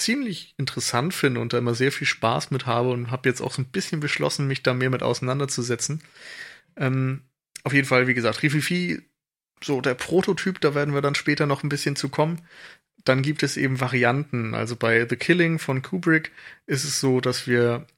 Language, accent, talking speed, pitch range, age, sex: German, German, 200 wpm, 120-145 Hz, 30-49, male